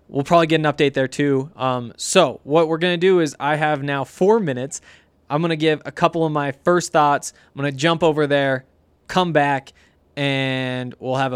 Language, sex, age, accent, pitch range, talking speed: English, male, 20-39, American, 140-175 Hz, 215 wpm